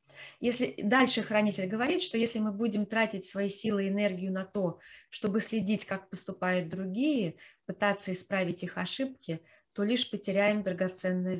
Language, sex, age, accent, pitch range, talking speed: Russian, female, 20-39, native, 175-210 Hz, 145 wpm